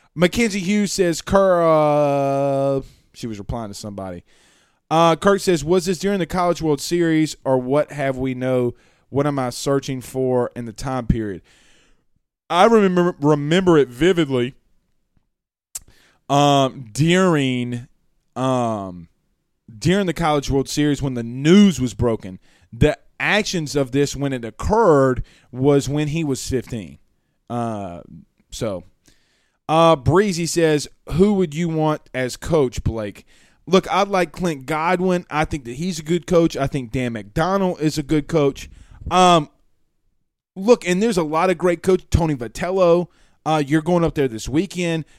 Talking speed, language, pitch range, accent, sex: 150 wpm, English, 130-175 Hz, American, male